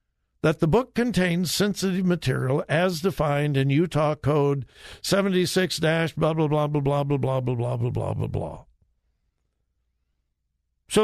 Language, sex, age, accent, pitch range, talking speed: English, male, 60-79, American, 115-180 Hz, 140 wpm